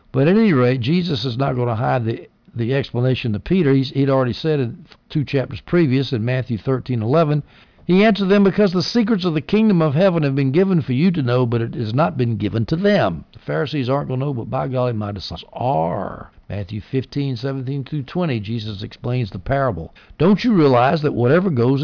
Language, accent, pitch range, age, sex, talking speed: English, American, 115-155 Hz, 60-79, male, 215 wpm